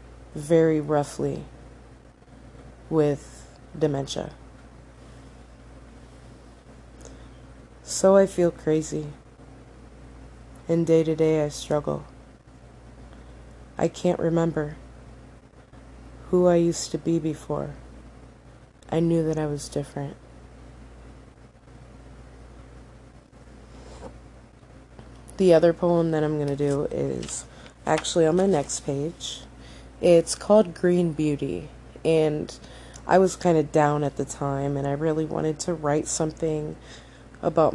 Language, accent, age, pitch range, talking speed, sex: English, American, 20-39, 140-170 Hz, 100 wpm, female